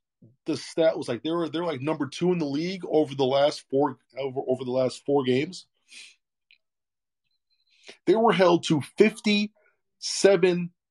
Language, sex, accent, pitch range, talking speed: English, male, American, 150-210 Hz, 155 wpm